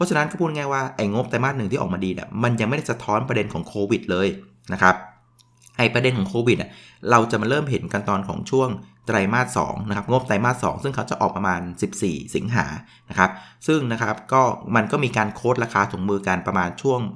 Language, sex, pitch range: Thai, male, 100-125 Hz